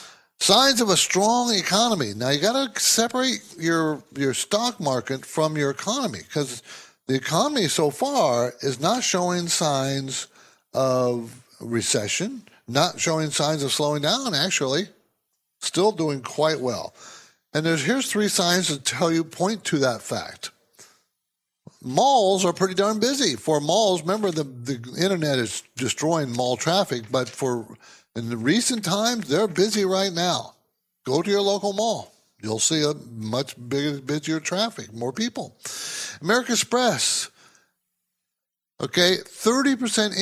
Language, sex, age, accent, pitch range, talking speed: English, male, 60-79, American, 140-210 Hz, 140 wpm